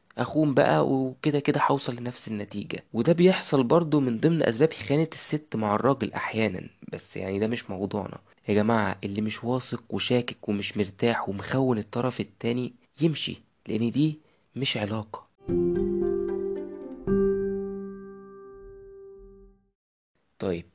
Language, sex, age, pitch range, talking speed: Arabic, male, 20-39, 105-155 Hz, 115 wpm